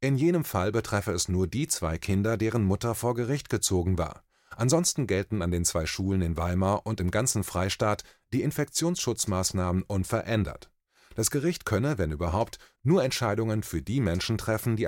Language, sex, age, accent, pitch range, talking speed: German, male, 30-49, German, 95-130 Hz, 170 wpm